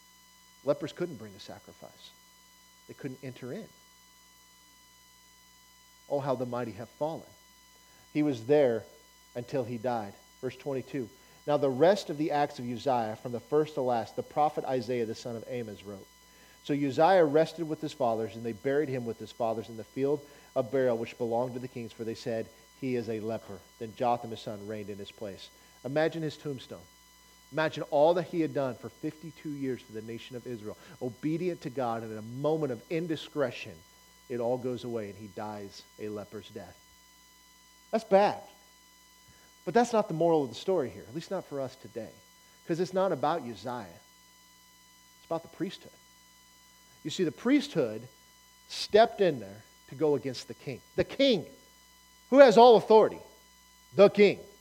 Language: English